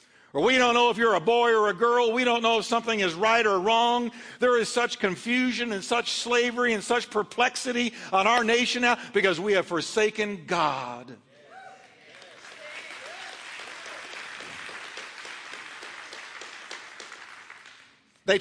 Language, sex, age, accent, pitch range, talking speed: English, male, 50-69, American, 155-215 Hz, 130 wpm